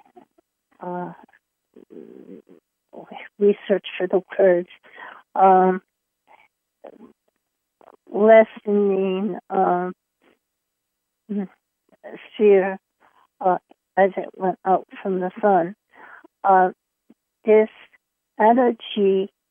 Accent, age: American, 50-69